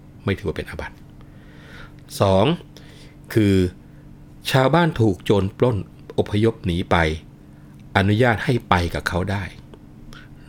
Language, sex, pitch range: Thai, male, 85-110 Hz